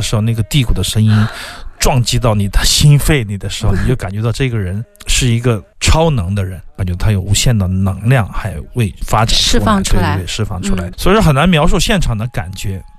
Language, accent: Chinese, native